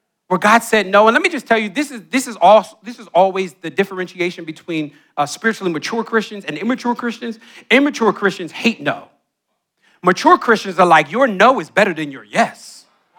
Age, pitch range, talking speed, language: 40-59, 205-285 Hz, 195 wpm, English